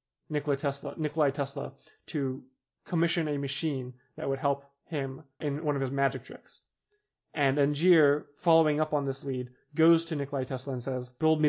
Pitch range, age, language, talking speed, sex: 135-155 Hz, 20-39, English, 170 wpm, male